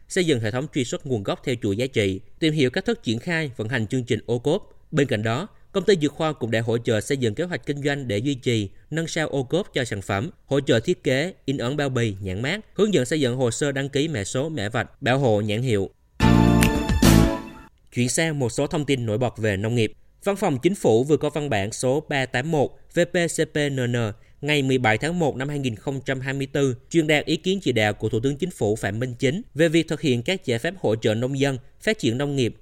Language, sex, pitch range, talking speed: Vietnamese, male, 120-155 Hz, 245 wpm